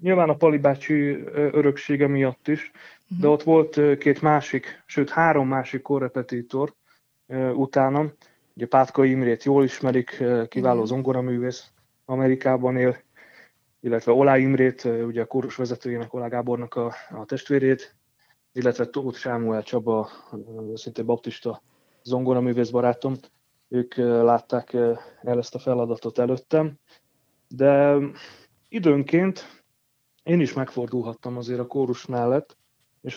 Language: Hungarian